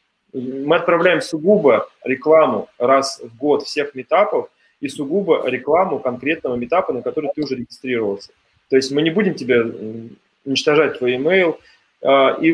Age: 20-39